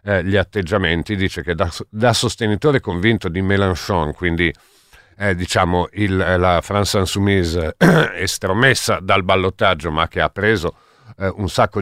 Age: 50-69